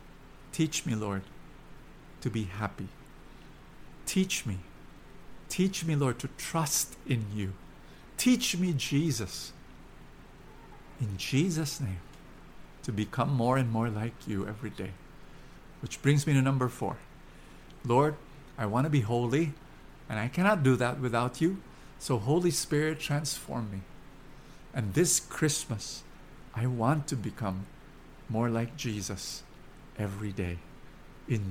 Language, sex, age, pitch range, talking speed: English, male, 50-69, 100-135 Hz, 130 wpm